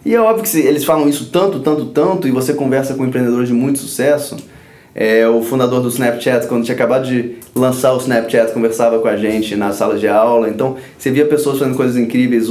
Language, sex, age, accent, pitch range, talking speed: Portuguese, male, 20-39, Brazilian, 115-160 Hz, 220 wpm